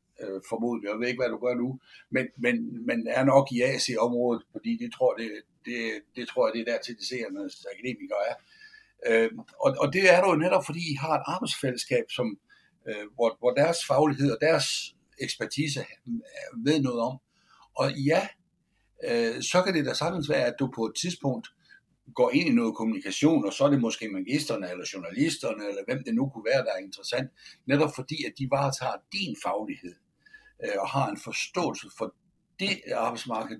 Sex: male